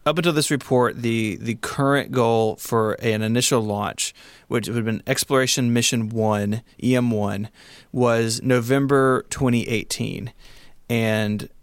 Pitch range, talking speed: 110-130 Hz, 130 wpm